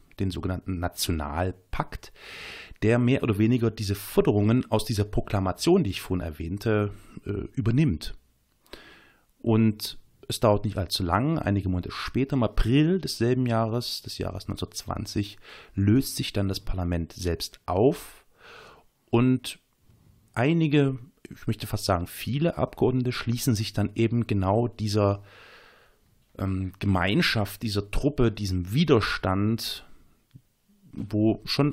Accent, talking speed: German, 115 wpm